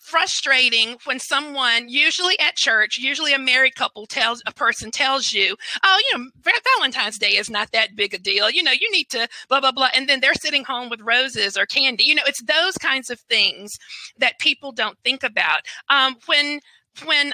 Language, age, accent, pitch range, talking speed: English, 40-59, American, 235-300 Hz, 200 wpm